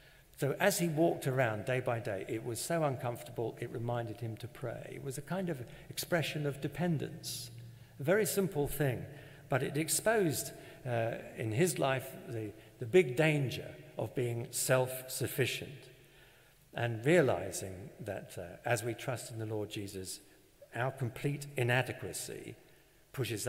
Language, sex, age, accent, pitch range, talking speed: English, male, 50-69, British, 110-145 Hz, 150 wpm